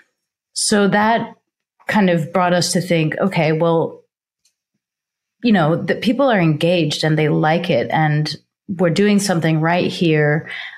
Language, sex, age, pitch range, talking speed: English, female, 30-49, 160-190 Hz, 145 wpm